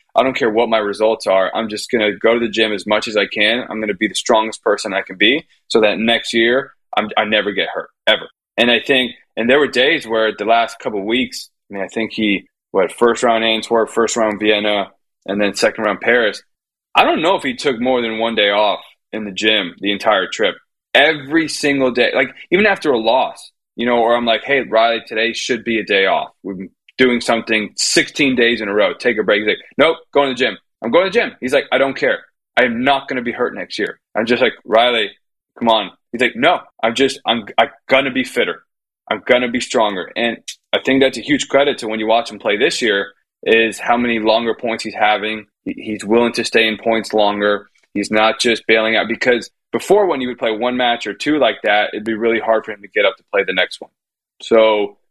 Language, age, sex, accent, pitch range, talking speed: English, 20-39, male, American, 110-125 Hz, 245 wpm